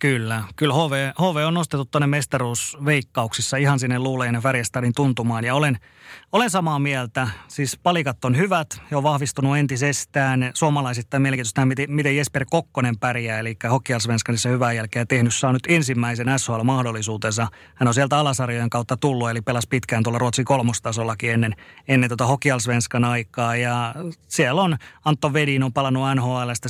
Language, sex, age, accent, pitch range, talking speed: Finnish, male, 30-49, native, 120-145 Hz, 150 wpm